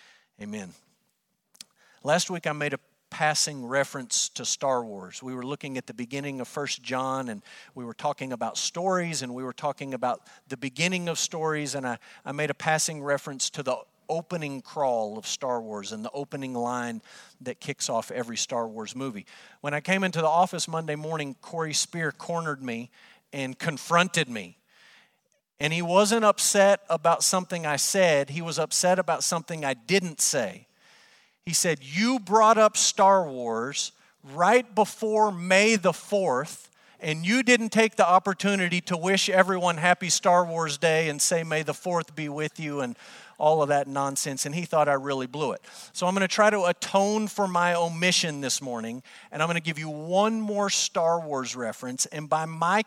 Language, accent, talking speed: English, American, 185 wpm